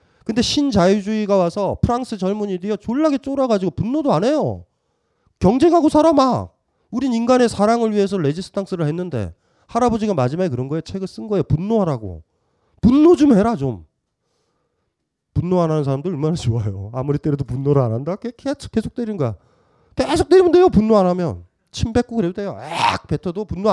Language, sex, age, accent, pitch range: Korean, male, 30-49, native, 145-225 Hz